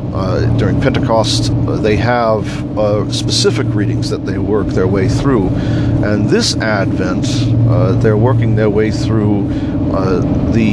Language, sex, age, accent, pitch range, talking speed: English, male, 50-69, American, 110-135 Hz, 145 wpm